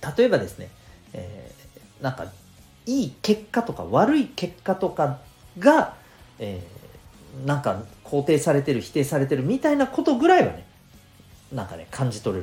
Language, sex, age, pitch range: Japanese, male, 40-59, 105-165 Hz